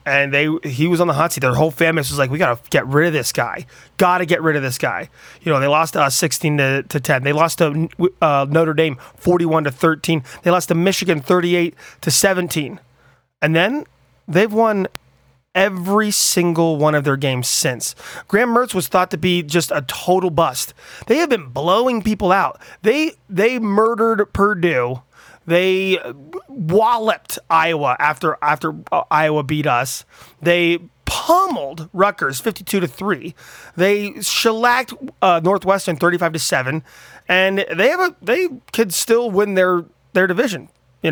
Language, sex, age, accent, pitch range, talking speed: English, male, 30-49, American, 150-200 Hz, 175 wpm